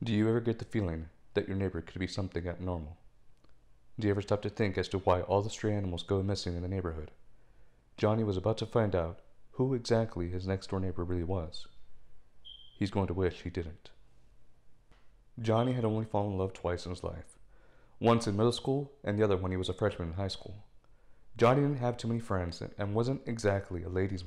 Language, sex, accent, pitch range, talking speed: English, male, American, 90-115 Hz, 215 wpm